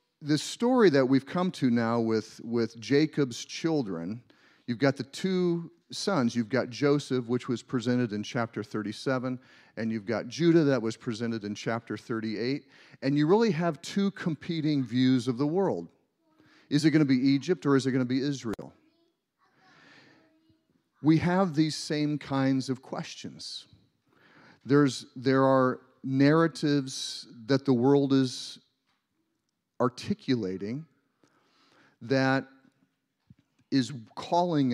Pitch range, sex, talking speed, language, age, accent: 125-160 Hz, male, 135 wpm, English, 40-59, American